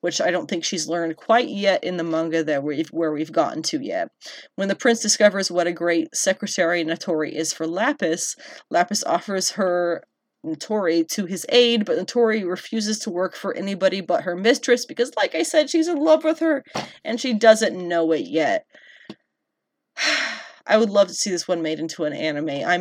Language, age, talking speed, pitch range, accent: English, 30-49, 195 wpm, 170-235 Hz, American